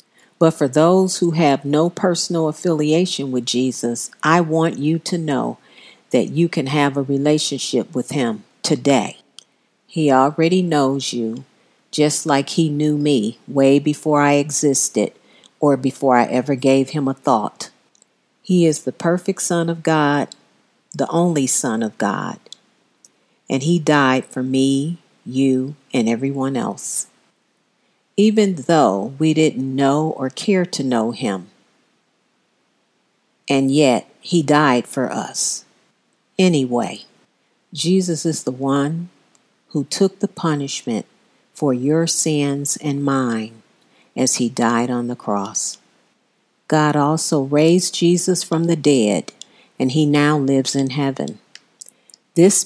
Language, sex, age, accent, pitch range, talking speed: English, female, 50-69, American, 135-165 Hz, 130 wpm